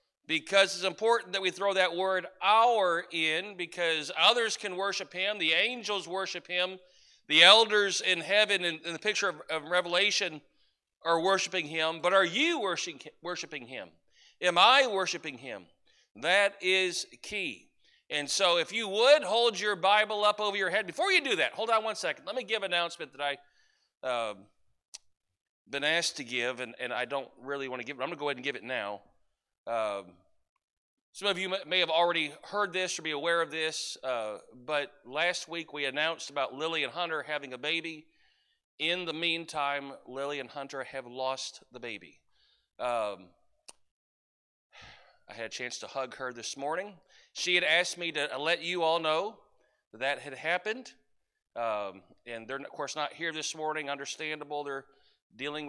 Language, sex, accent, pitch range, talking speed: English, male, American, 140-190 Hz, 180 wpm